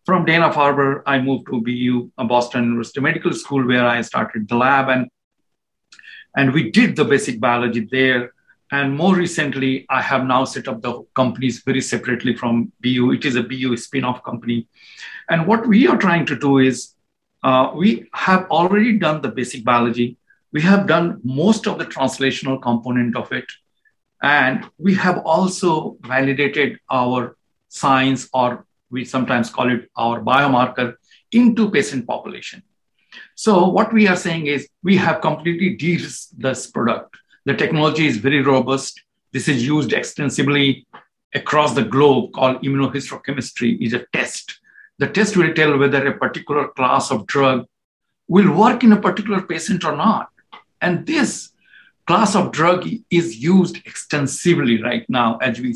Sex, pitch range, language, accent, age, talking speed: male, 125-175 Hz, English, Indian, 60-79, 155 wpm